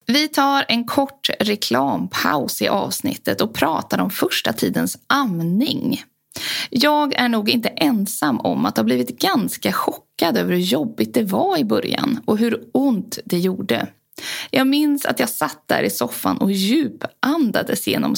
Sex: female